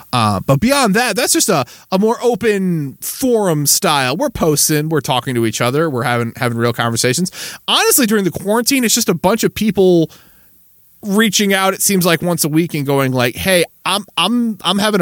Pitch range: 130-215 Hz